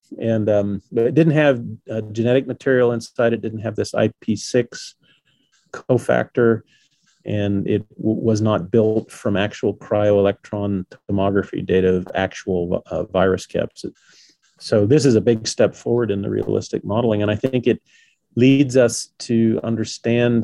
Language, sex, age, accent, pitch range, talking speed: English, male, 40-59, American, 105-120 Hz, 150 wpm